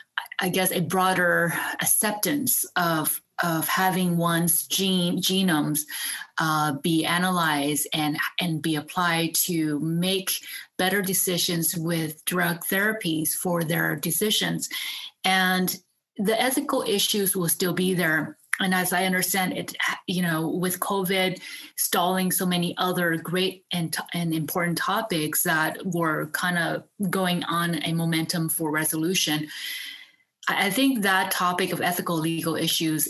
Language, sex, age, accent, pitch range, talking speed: English, female, 30-49, American, 165-185 Hz, 130 wpm